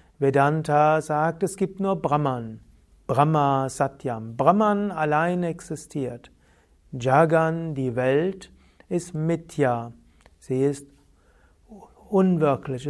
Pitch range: 130-170 Hz